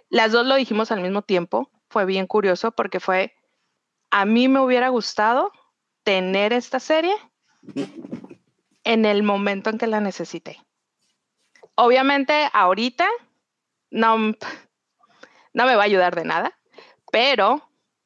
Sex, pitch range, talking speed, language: female, 205-270 Hz, 125 wpm, English